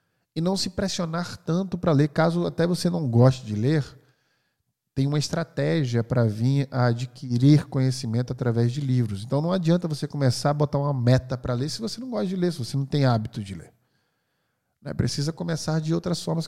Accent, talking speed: Brazilian, 200 wpm